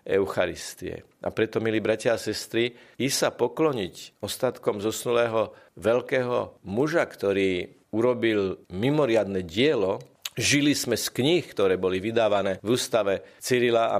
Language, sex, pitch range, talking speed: Slovak, male, 100-125 Hz, 125 wpm